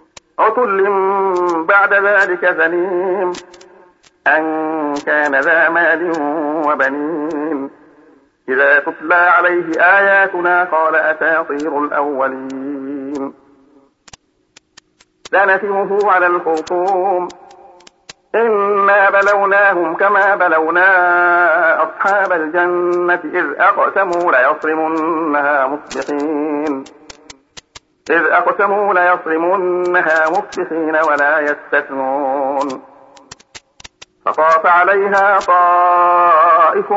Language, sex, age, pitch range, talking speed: Arabic, male, 50-69, 155-190 Hz, 60 wpm